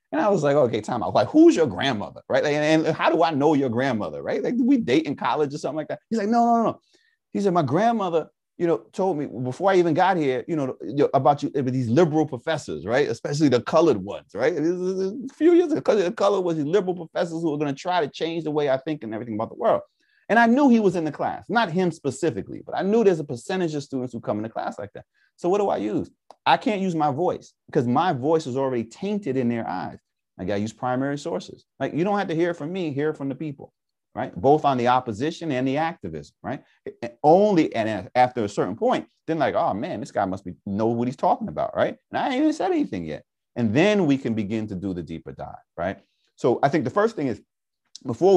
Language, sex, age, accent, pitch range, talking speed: English, male, 30-49, American, 130-200 Hz, 260 wpm